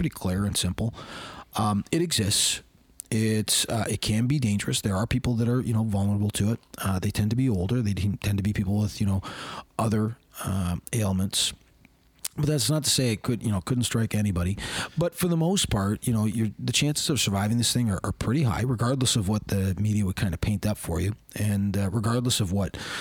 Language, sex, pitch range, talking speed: English, male, 95-120 Hz, 225 wpm